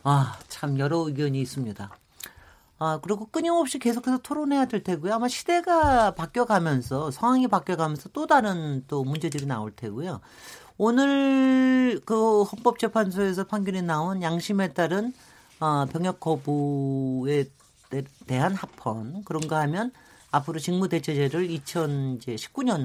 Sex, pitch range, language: male, 140-215 Hz, Korean